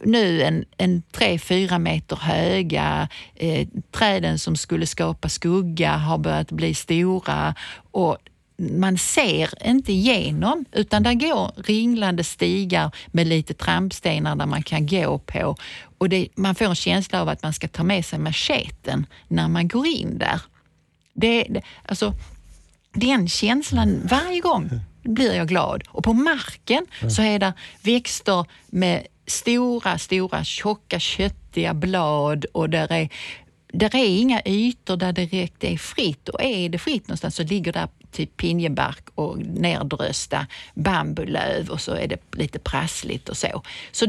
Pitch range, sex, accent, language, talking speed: 160-215 Hz, female, native, Swedish, 145 wpm